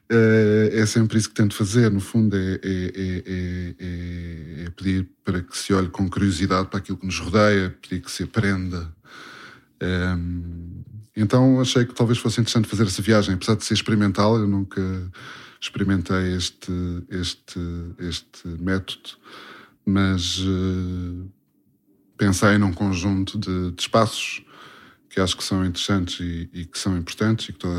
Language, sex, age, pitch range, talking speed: Portuguese, male, 20-39, 90-110 Hz, 155 wpm